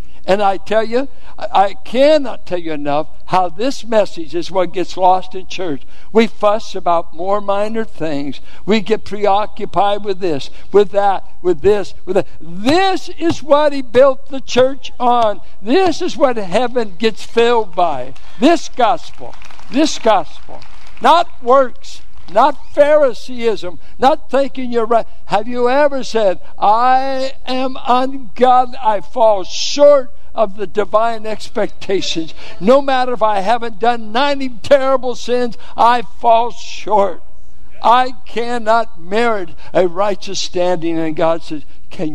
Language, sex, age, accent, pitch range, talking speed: English, male, 60-79, American, 175-255 Hz, 140 wpm